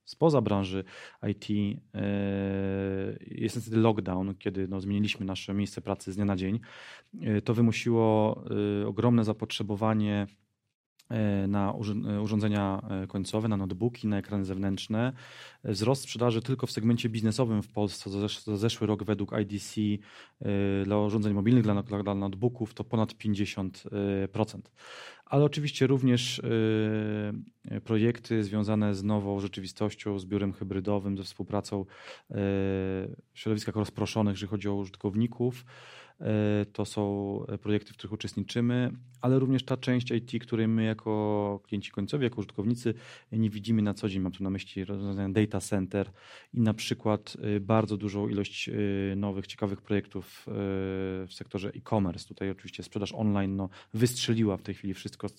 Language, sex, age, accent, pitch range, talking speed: Polish, male, 30-49, native, 100-110 Hz, 130 wpm